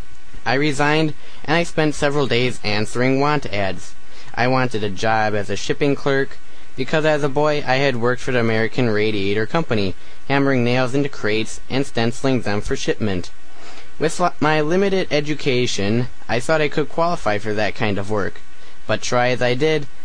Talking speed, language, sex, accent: 175 wpm, English, male, American